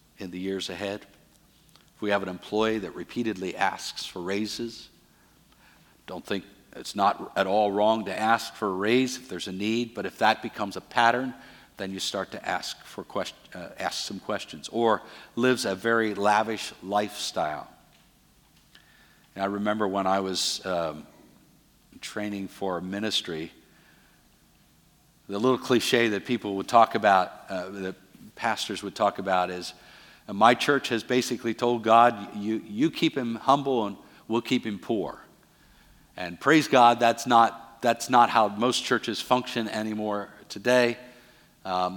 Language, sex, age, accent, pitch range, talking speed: English, male, 50-69, American, 95-120 Hz, 155 wpm